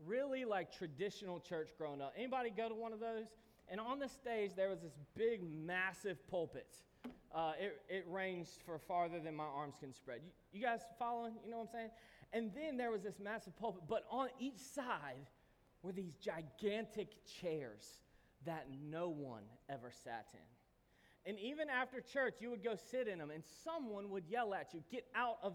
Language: English